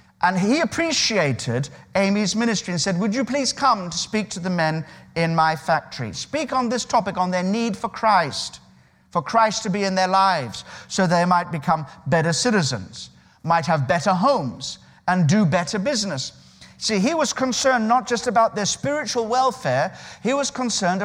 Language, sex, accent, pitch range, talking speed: English, male, British, 160-215 Hz, 175 wpm